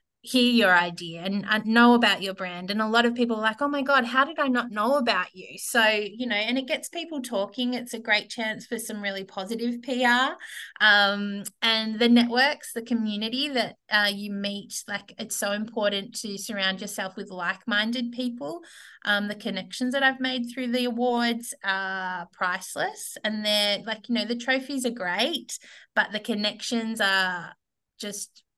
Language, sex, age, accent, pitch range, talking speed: English, female, 20-39, Australian, 195-235 Hz, 185 wpm